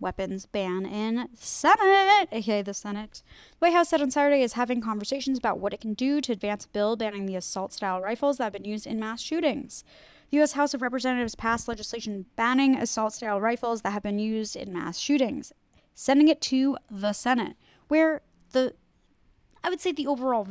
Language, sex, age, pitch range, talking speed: English, female, 10-29, 210-265 Hz, 200 wpm